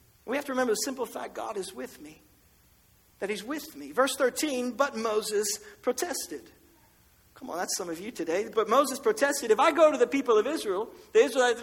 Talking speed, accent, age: 205 wpm, American, 50-69